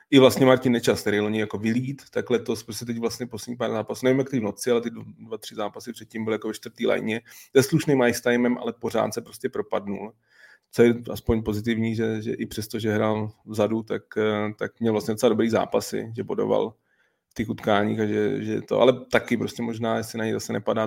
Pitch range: 105-120 Hz